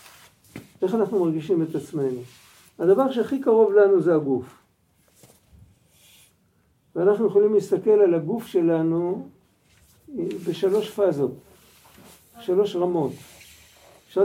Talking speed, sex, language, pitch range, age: 95 wpm, male, Hebrew, 170-240 Hz, 50-69